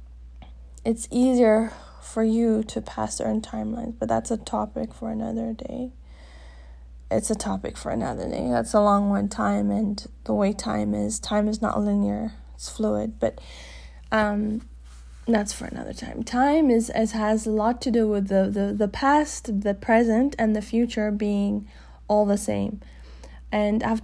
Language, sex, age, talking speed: English, female, 20-39, 165 wpm